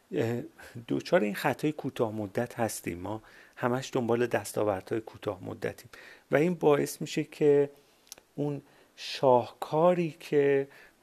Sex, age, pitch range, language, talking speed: male, 40-59, 105-135 Hz, Persian, 110 wpm